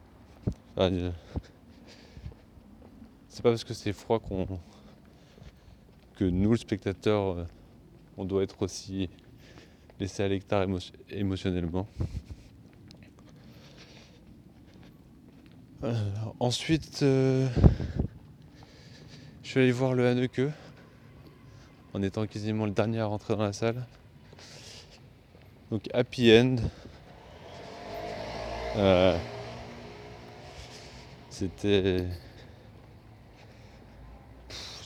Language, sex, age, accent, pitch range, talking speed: French, male, 20-39, French, 90-115 Hz, 75 wpm